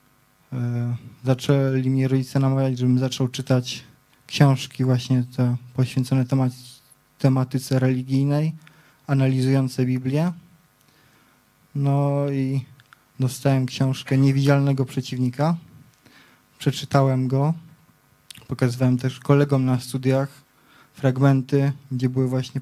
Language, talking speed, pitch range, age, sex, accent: Polish, 85 wpm, 130-150 Hz, 20-39, male, native